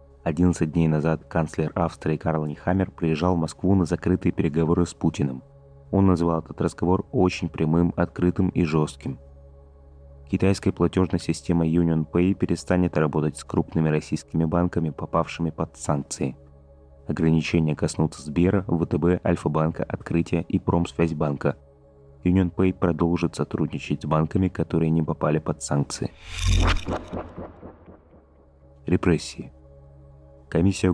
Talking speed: 115 wpm